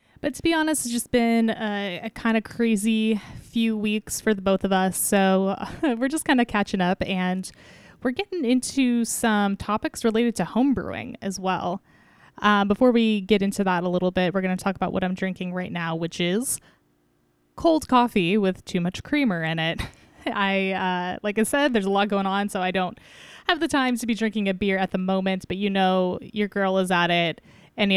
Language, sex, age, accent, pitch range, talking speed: English, female, 10-29, American, 180-225 Hz, 215 wpm